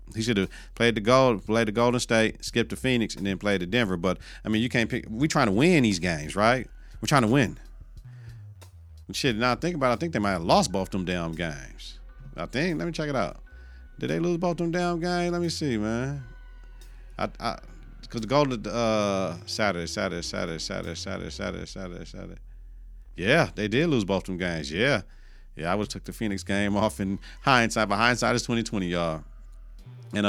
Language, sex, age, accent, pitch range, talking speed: English, male, 40-59, American, 95-125 Hz, 215 wpm